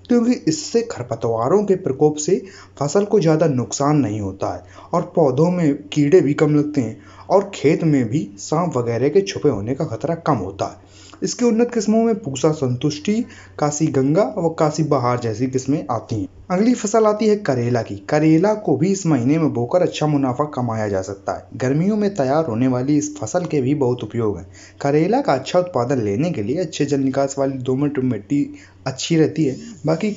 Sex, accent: male, native